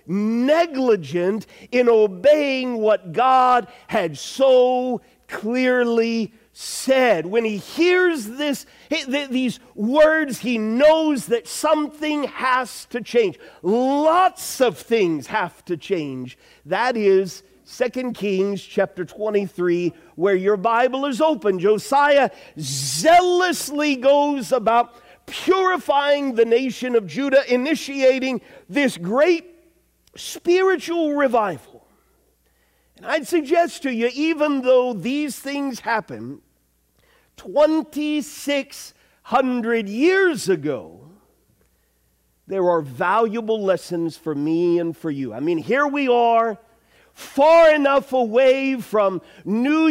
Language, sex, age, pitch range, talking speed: English, male, 50-69, 200-285 Hz, 100 wpm